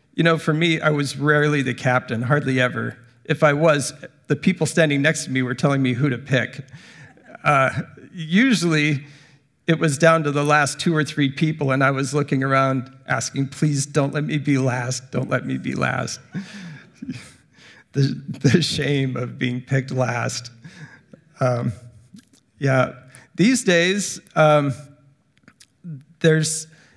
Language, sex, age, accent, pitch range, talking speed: English, male, 40-59, American, 130-160 Hz, 150 wpm